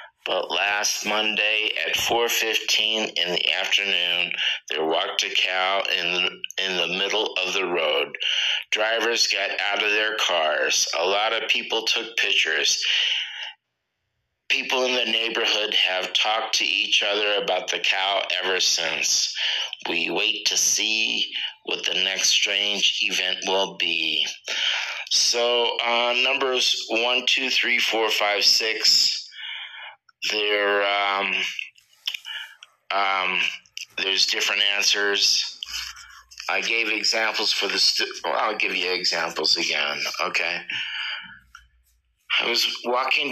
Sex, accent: male, American